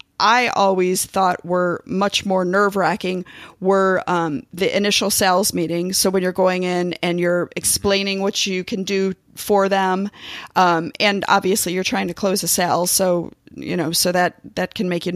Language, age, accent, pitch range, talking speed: English, 40-59, American, 180-210 Hz, 180 wpm